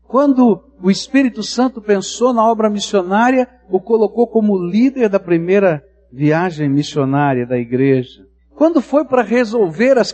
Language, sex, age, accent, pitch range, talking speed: Portuguese, male, 60-79, Brazilian, 150-225 Hz, 135 wpm